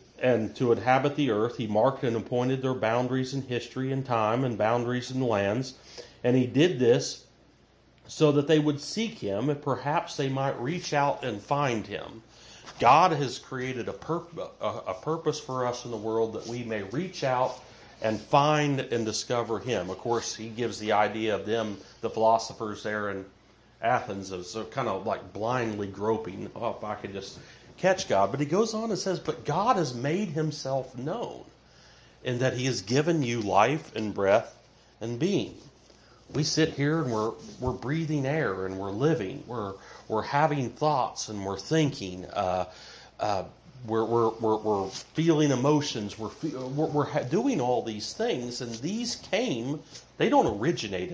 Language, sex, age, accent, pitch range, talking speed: English, male, 40-59, American, 110-145 Hz, 175 wpm